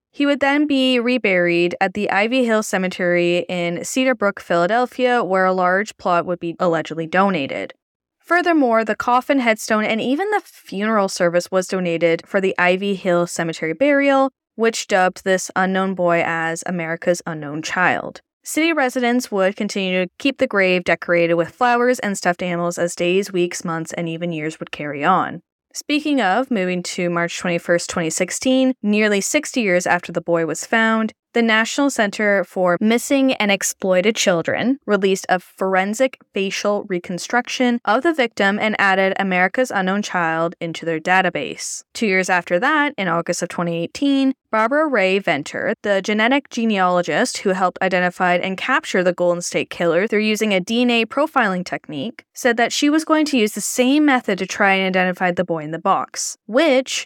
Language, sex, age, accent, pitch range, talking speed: English, female, 10-29, American, 175-245 Hz, 170 wpm